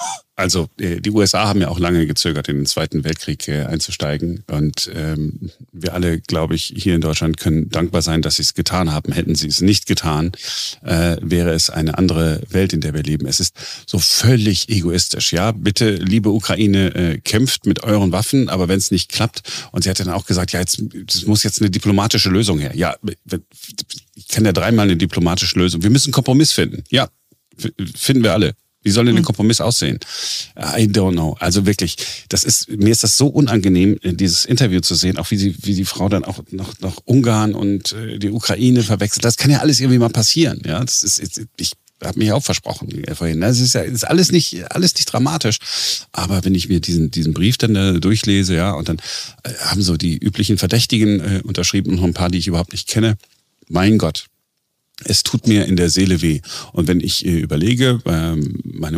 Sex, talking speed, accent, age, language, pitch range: male, 205 wpm, German, 40-59, German, 85-110 Hz